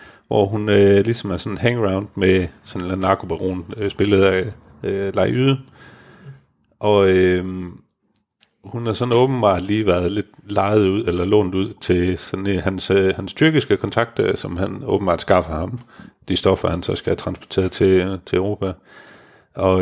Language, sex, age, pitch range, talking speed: Danish, male, 40-59, 95-115 Hz, 165 wpm